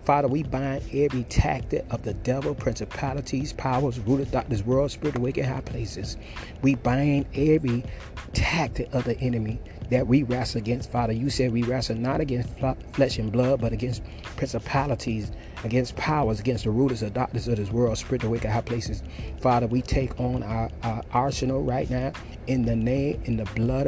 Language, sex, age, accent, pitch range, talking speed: English, male, 30-49, American, 115-135 Hz, 180 wpm